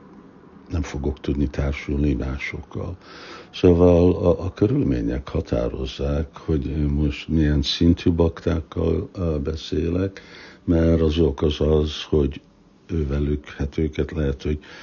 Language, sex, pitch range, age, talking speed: Hungarian, male, 75-90 Hz, 60-79, 100 wpm